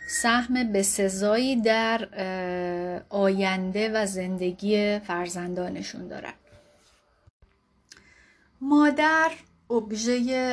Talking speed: 65 wpm